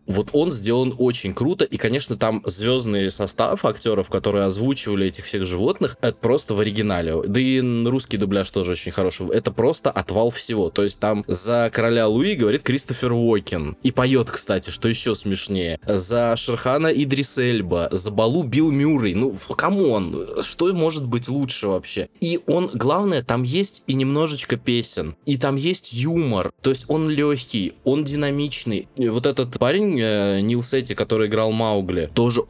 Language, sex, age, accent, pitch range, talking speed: Russian, male, 20-39, native, 100-130 Hz, 165 wpm